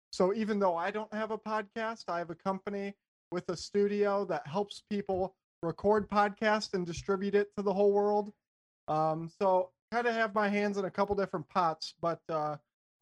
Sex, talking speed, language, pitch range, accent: male, 195 wpm, English, 165-195 Hz, American